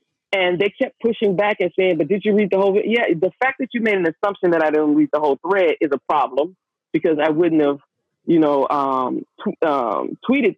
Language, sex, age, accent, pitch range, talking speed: English, female, 40-59, American, 170-245 Hz, 240 wpm